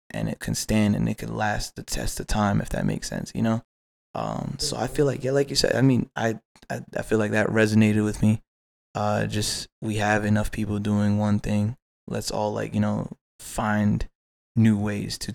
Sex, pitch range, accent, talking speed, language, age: male, 105-110 Hz, American, 220 wpm, English, 20-39